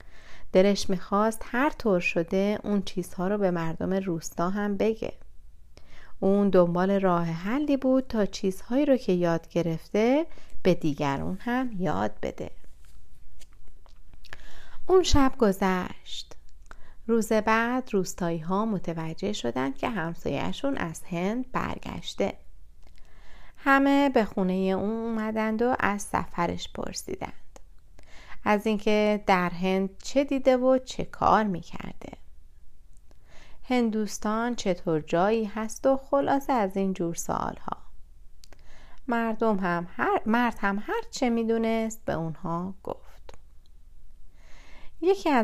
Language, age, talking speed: Persian, 30-49, 110 wpm